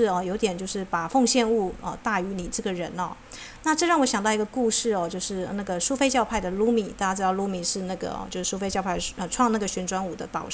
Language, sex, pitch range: Chinese, female, 195-240 Hz